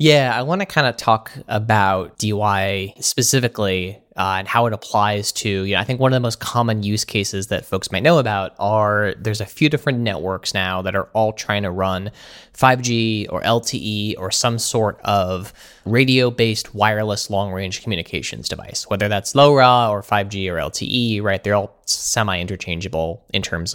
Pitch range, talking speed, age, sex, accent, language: 95-120 Hz, 175 wpm, 20-39, male, American, English